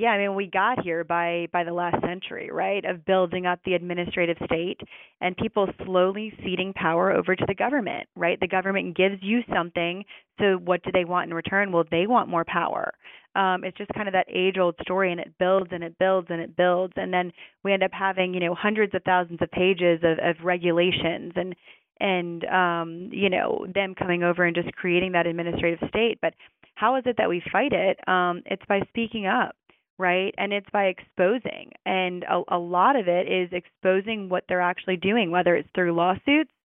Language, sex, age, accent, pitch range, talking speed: English, female, 30-49, American, 175-195 Hz, 205 wpm